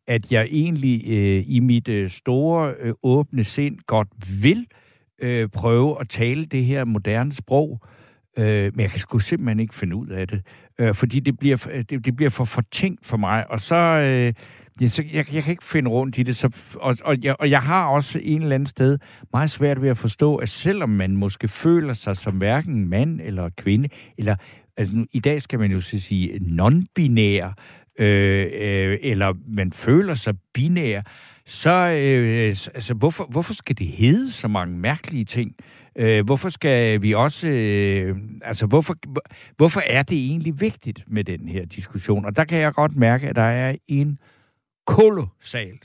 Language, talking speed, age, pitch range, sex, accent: Danish, 185 wpm, 60-79, 105-145 Hz, male, native